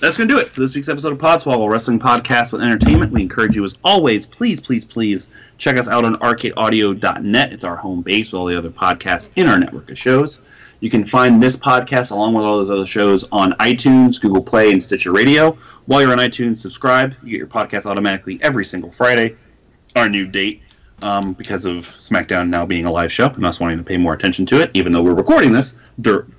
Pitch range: 100-130 Hz